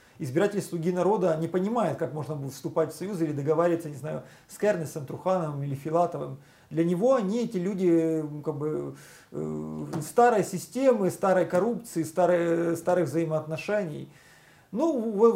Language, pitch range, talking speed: Russian, 155-190 Hz, 145 wpm